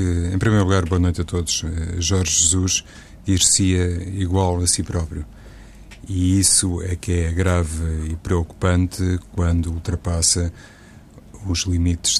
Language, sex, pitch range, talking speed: Portuguese, male, 85-95 Hz, 130 wpm